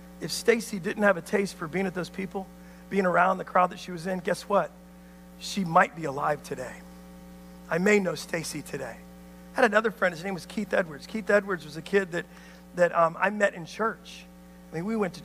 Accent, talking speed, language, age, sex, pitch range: American, 225 wpm, English, 40-59, male, 175-240 Hz